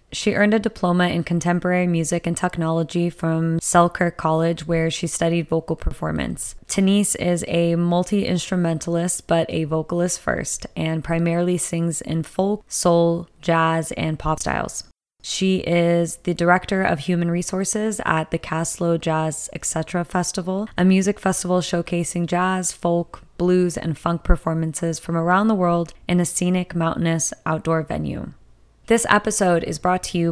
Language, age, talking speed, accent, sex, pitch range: English, 20-39, 145 wpm, American, female, 170-190 Hz